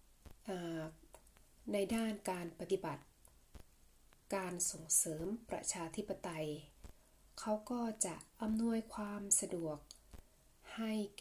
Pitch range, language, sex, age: 170-210 Hz, Thai, female, 20-39